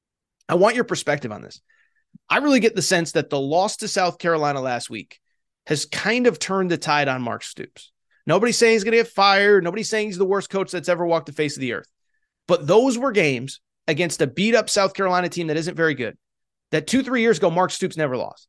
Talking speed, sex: 235 wpm, male